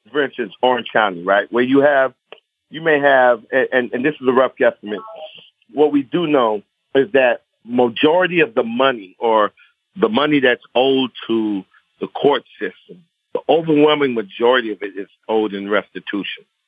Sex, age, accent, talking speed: male, 50-69, American, 170 wpm